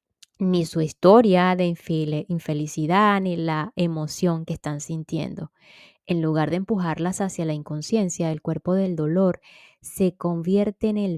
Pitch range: 155-180 Hz